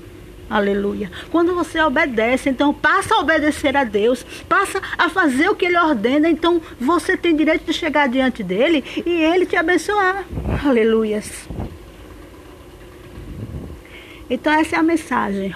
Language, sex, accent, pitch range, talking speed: Portuguese, female, Brazilian, 225-290 Hz, 135 wpm